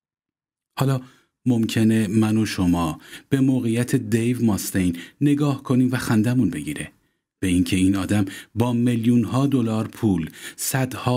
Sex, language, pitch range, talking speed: male, Persian, 95-125 Hz, 125 wpm